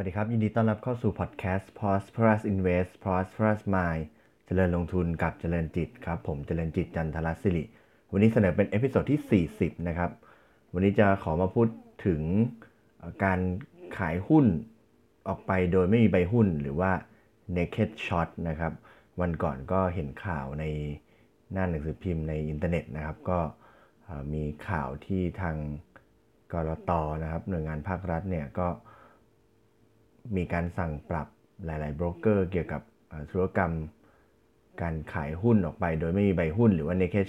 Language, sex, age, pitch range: Thai, male, 30-49, 80-100 Hz